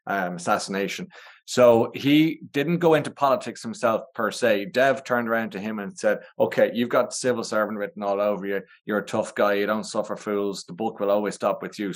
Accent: Irish